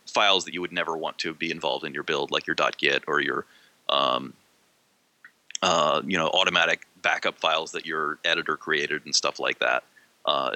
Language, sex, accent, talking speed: English, male, American, 190 wpm